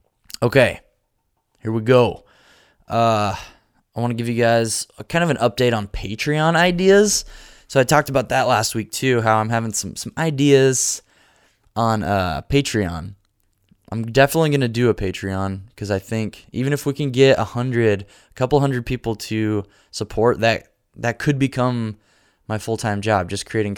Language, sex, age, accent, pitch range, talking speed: English, male, 20-39, American, 100-125 Hz, 170 wpm